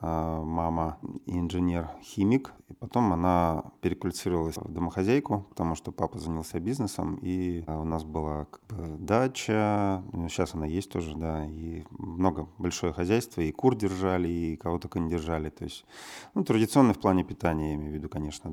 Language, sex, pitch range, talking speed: Russian, male, 80-100 Hz, 150 wpm